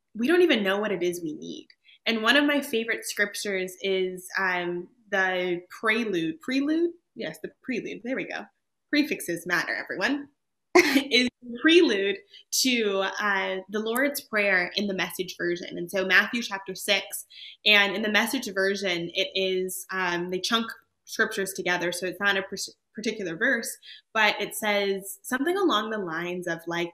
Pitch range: 180-235 Hz